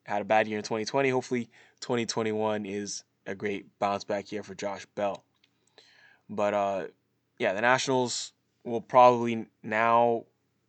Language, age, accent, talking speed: English, 20-39, American, 140 wpm